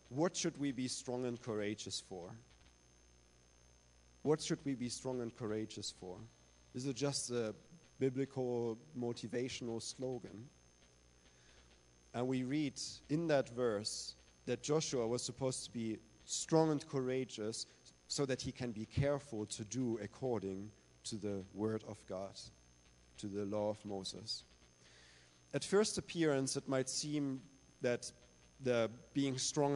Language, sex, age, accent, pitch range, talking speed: English, male, 40-59, German, 90-135 Hz, 135 wpm